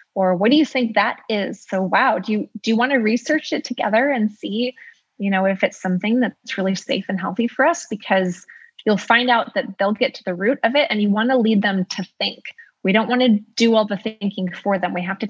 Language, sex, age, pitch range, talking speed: English, female, 20-39, 190-250 Hz, 255 wpm